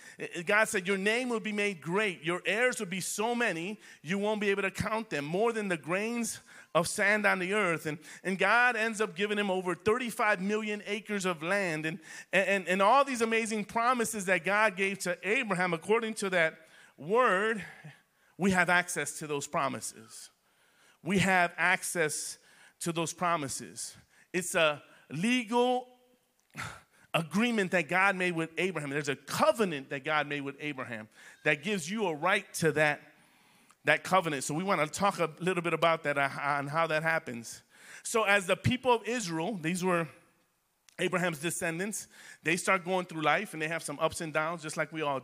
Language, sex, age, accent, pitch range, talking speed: English, male, 30-49, American, 160-210 Hz, 185 wpm